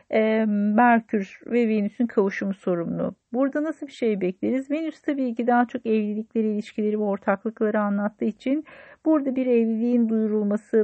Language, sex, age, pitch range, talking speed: Turkish, female, 50-69, 195-235 Hz, 140 wpm